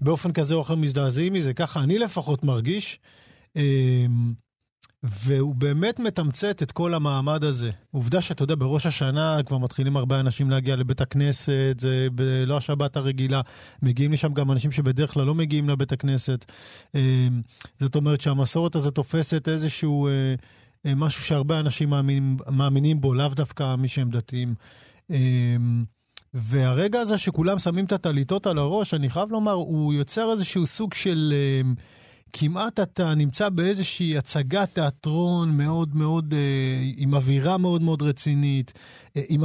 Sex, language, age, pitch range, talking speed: male, Hebrew, 40-59, 130-165 Hz, 145 wpm